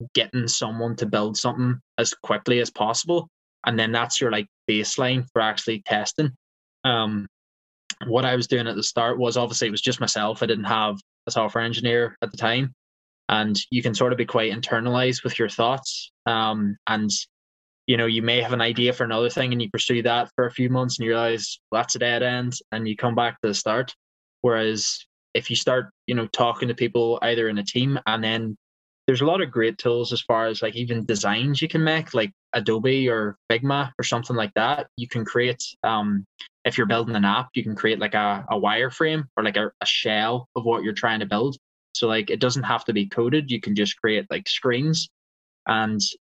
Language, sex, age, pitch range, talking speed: English, male, 10-29, 110-125 Hz, 215 wpm